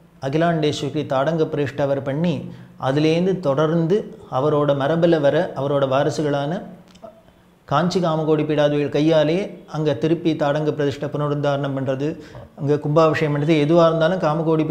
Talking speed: 120 wpm